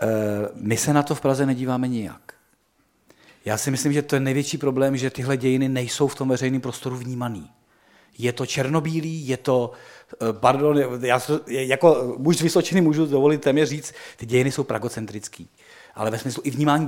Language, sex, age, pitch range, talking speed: Czech, male, 40-59, 125-145 Hz, 170 wpm